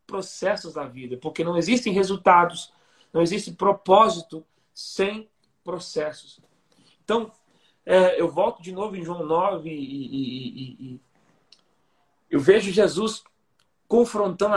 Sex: male